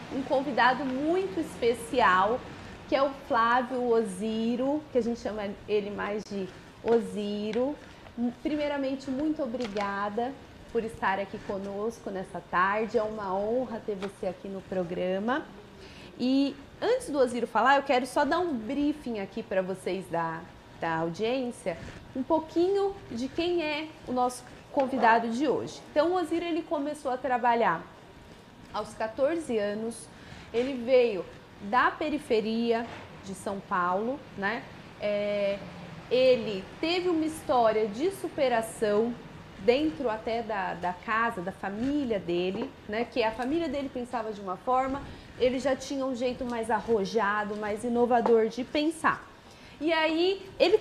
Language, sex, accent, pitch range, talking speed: Portuguese, female, Brazilian, 210-280 Hz, 135 wpm